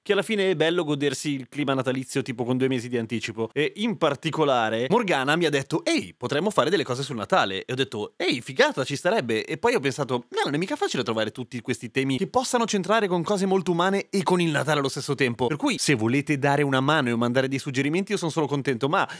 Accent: native